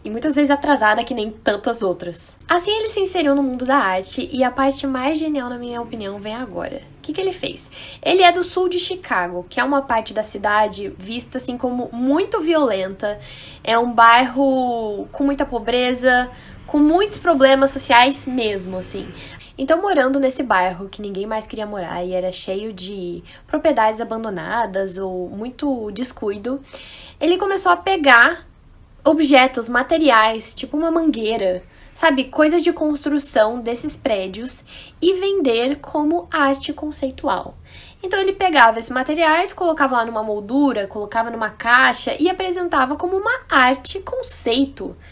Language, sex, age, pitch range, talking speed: Portuguese, female, 10-29, 230-315 Hz, 155 wpm